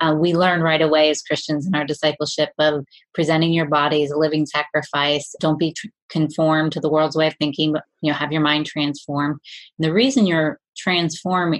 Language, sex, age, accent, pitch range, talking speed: English, female, 30-49, American, 150-180 Hz, 205 wpm